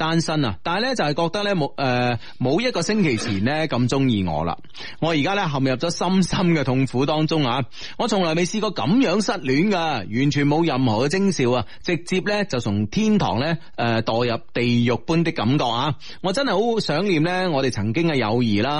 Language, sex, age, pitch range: Chinese, male, 30-49, 120-170 Hz